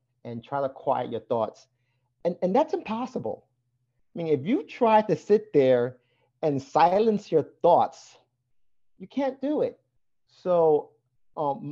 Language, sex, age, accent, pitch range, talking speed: English, male, 50-69, American, 125-180 Hz, 145 wpm